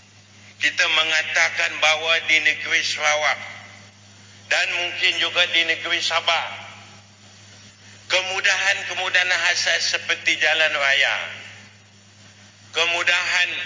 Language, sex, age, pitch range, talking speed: English, male, 50-69, 100-165 Hz, 80 wpm